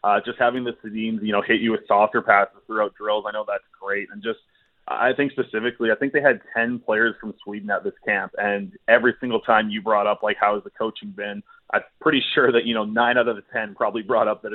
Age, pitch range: 20-39, 110-125 Hz